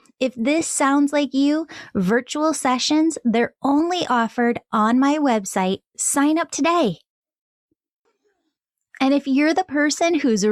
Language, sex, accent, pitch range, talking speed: English, female, American, 225-295 Hz, 125 wpm